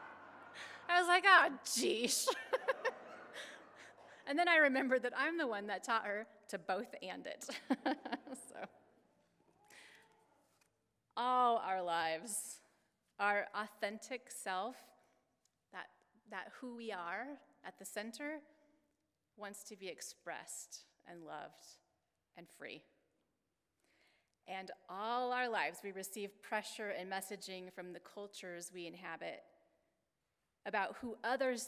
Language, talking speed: English, 115 wpm